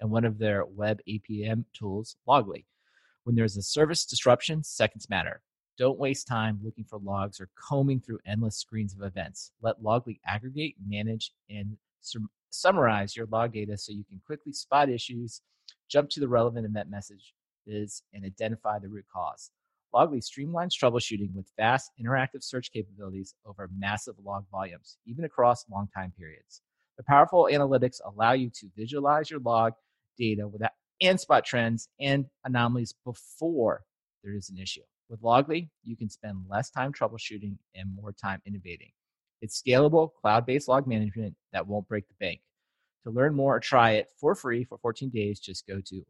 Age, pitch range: 40-59, 100-130 Hz